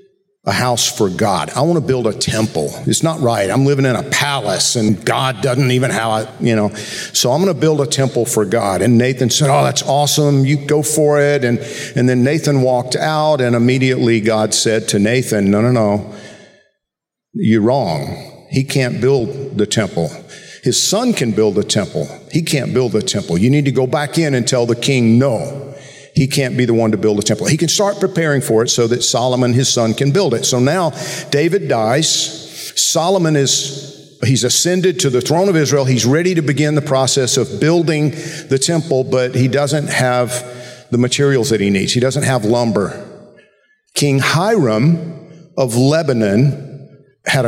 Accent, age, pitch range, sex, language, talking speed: American, 50-69, 120-155 Hz, male, English, 190 wpm